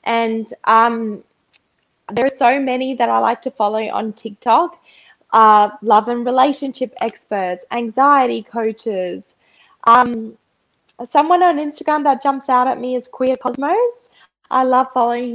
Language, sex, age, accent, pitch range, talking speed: English, female, 10-29, Australian, 210-250 Hz, 135 wpm